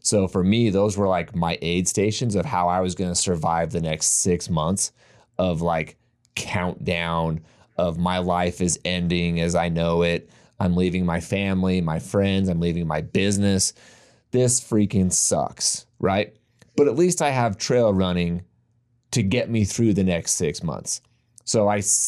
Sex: male